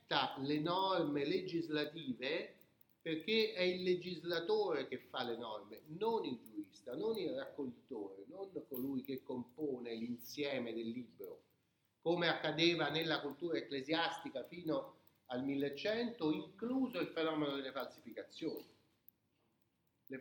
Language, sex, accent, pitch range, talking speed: Italian, male, native, 145-215 Hz, 115 wpm